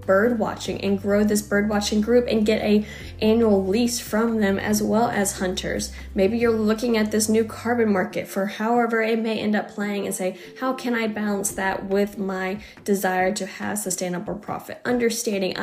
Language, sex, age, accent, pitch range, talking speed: English, female, 10-29, American, 185-225 Hz, 190 wpm